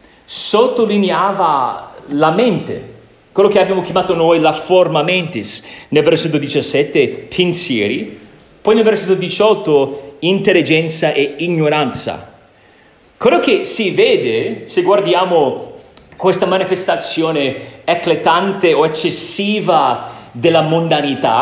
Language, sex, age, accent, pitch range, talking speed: Italian, male, 40-59, native, 150-210 Hz, 100 wpm